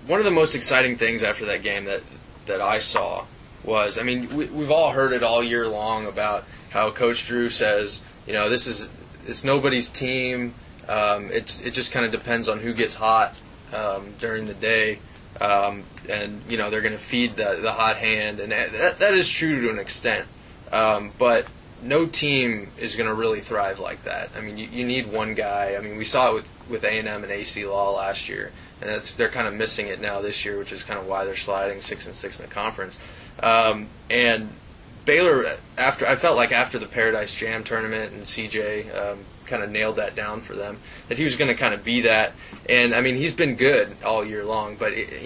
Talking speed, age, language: 220 wpm, 20-39, English